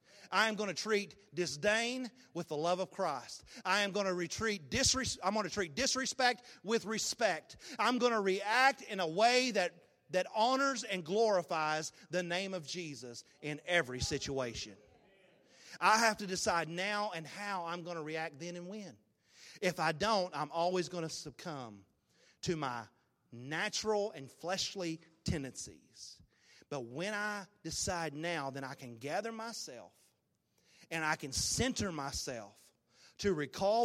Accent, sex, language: American, male, English